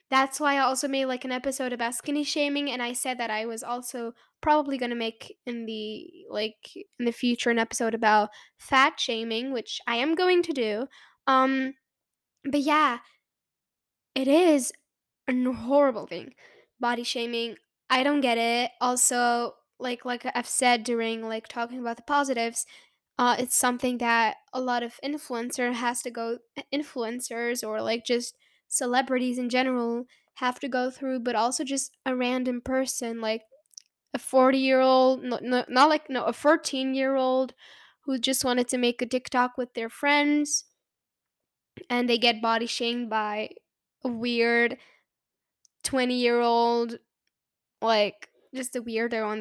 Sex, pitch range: female, 235-265 Hz